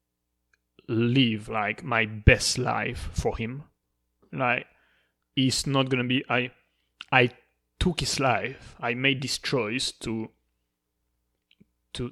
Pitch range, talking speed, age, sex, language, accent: 105-125 Hz, 115 wpm, 20-39, male, English, French